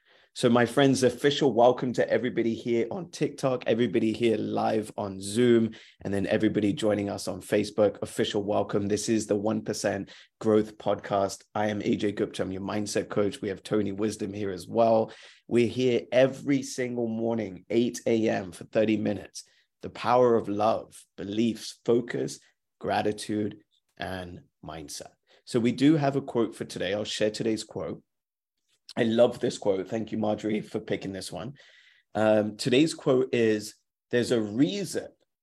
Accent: British